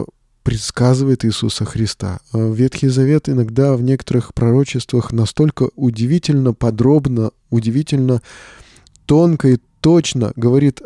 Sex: male